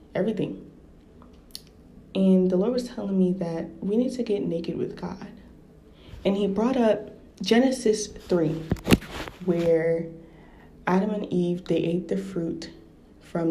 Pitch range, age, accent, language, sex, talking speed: 160-190 Hz, 20-39, American, English, female, 135 wpm